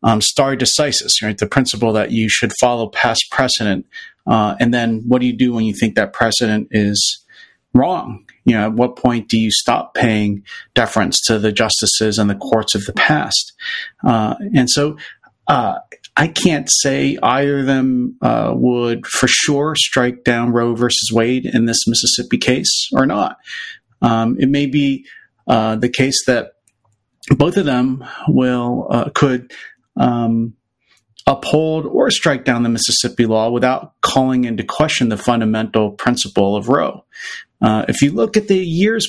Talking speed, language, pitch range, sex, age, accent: 165 wpm, English, 115-140 Hz, male, 40-59, American